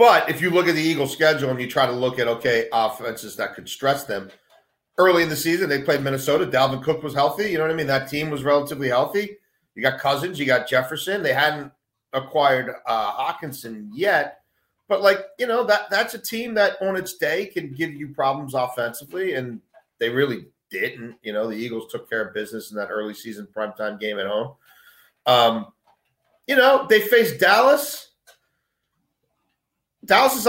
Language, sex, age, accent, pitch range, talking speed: English, male, 40-59, American, 130-190 Hz, 190 wpm